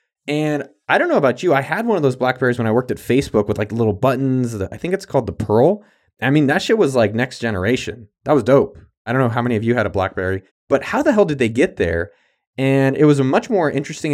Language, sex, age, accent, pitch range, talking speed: English, male, 20-39, American, 115-150 Hz, 265 wpm